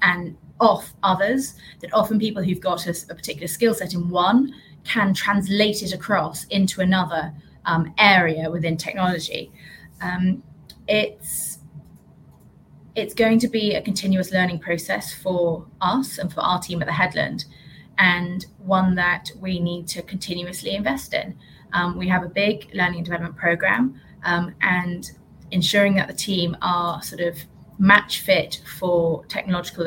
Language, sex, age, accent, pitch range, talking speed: English, female, 20-39, British, 170-195 Hz, 150 wpm